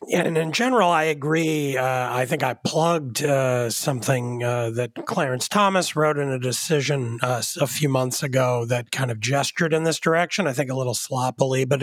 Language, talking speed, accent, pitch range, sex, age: English, 200 wpm, American, 135-175 Hz, male, 40-59